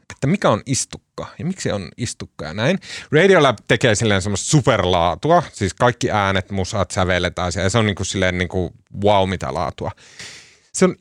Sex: male